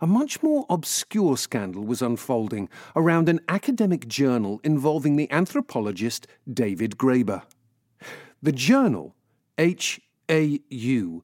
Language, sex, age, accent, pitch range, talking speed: English, male, 40-59, British, 120-180 Hz, 100 wpm